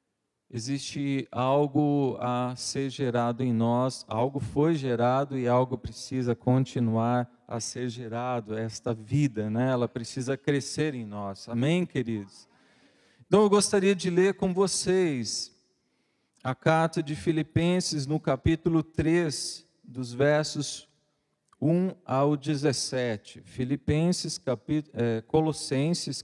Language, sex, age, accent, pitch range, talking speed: Portuguese, male, 40-59, Brazilian, 125-165 Hz, 110 wpm